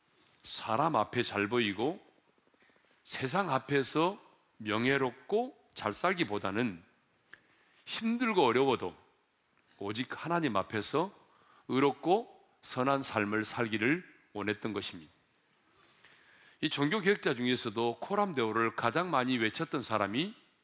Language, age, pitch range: Korean, 40-59, 105-150 Hz